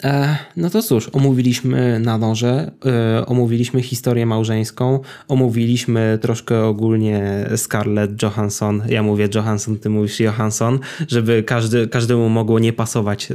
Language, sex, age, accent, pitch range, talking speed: Polish, male, 20-39, native, 115-135 Hz, 110 wpm